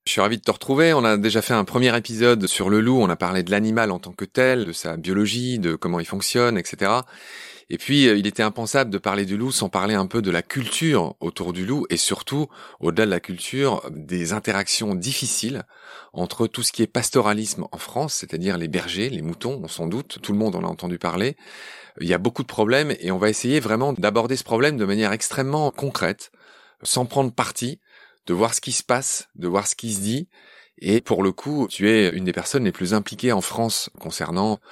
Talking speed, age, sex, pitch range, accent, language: 230 wpm, 30-49, male, 100-135 Hz, French, French